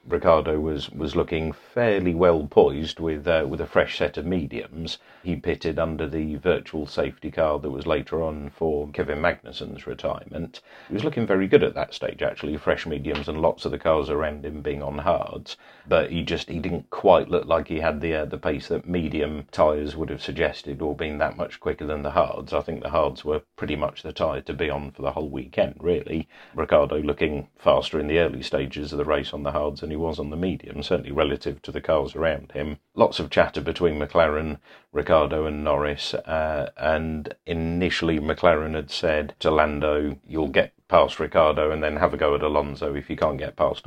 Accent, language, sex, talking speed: British, English, male, 210 wpm